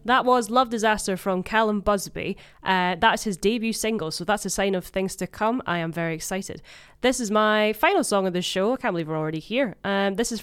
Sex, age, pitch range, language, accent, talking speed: female, 20-39, 170-215 Hz, English, British, 235 wpm